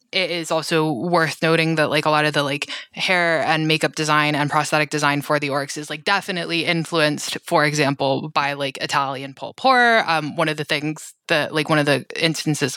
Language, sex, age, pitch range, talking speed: English, female, 20-39, 150-185 Hz, 205 wpm